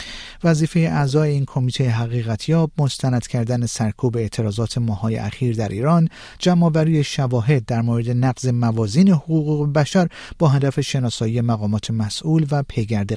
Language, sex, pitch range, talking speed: Persian, male, 120-155 Hz, 130 wpm